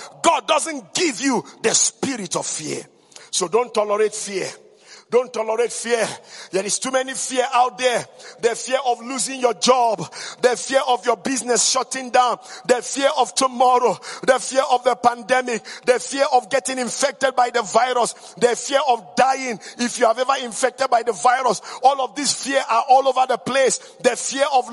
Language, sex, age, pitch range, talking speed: English, male, 50-69, 245-285 Hz, 185 wpm